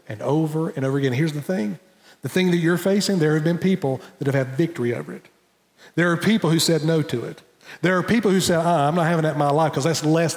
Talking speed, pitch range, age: 270 wpm, 160-220 Hz, 40-59